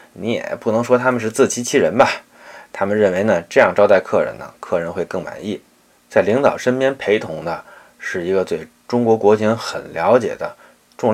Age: 20-39